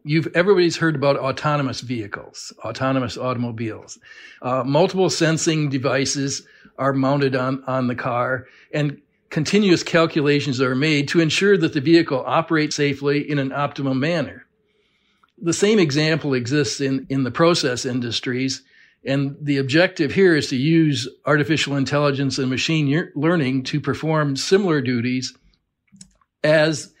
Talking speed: 135 wpm